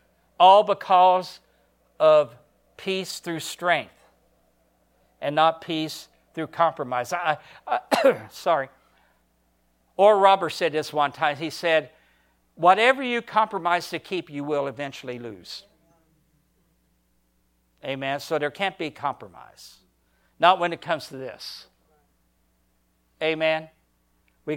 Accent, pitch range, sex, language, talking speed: American, 140-190 Hz, male, English, 110 wpm